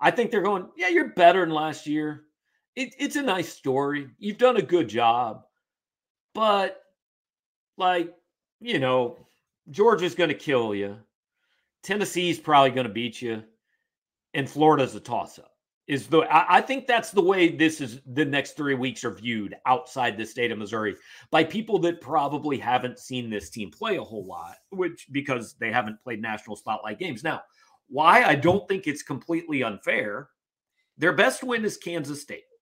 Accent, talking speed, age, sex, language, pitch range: American, 175 wpm, 40-59, male, English, 125-190 Hz